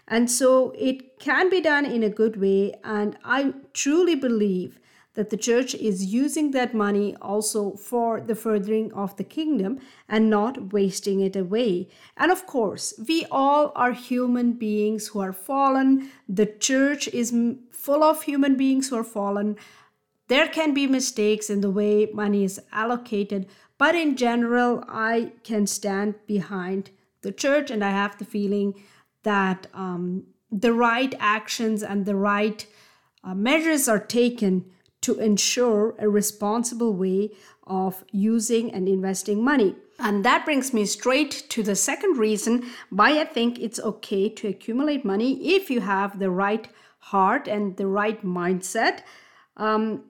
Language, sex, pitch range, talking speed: English, female, 205-265 Hz, 155 wpm